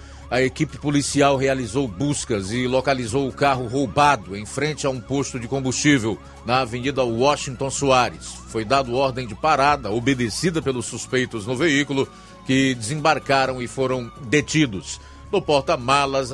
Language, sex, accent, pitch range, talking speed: Portuguese, male, Brazilian, 120-145 Hz, 140 wpm